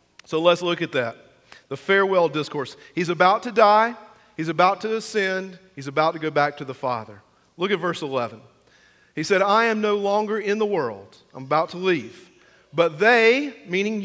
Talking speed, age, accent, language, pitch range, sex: 190 wpm, 40-59, American, English, 150-205 Hz, male